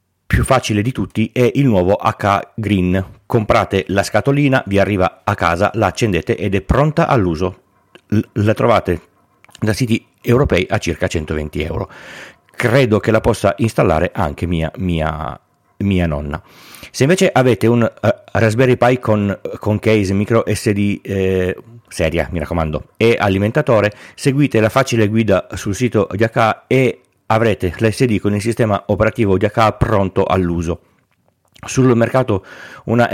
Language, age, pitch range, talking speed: Italian, 40-59, 95-120 Hz, 150 wpm